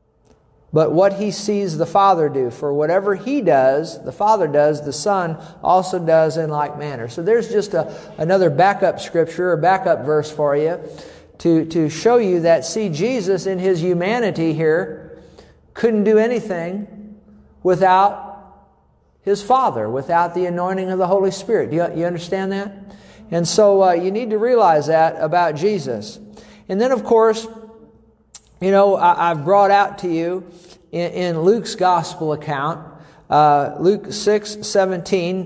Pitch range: 170-205 Hz